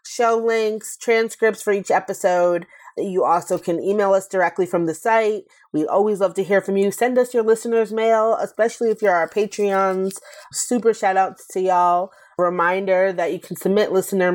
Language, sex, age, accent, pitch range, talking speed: English, female, 30-49, American, 165-220 Hz, 180 wpm